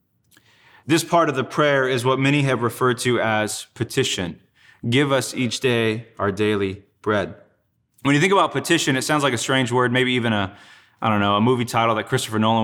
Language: English